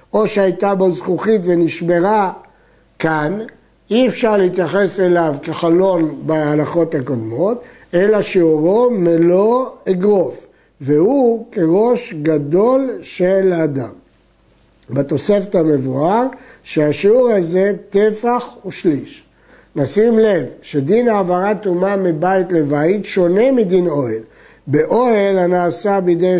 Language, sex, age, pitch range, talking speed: Hebrew, male, 60-79, 160-215 Hz, 95 wpm